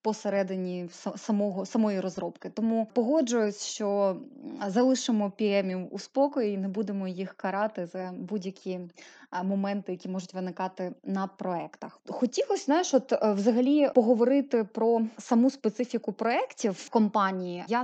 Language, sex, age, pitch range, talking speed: Ukrainian, female, 20-39, 195-235 Hz, 120 wpm